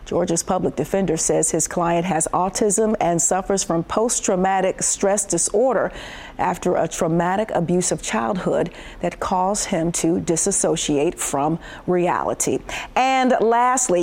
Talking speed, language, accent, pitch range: 125 wpm, English, American, 175-225 Hz